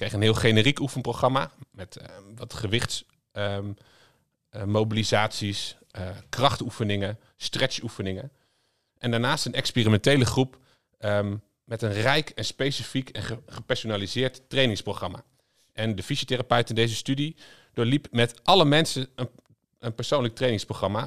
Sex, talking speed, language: male, 110 wpm, Dutch